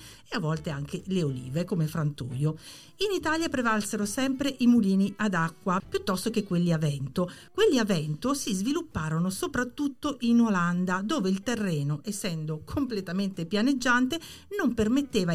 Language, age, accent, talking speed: Italian, 50-69, native, 145 wpm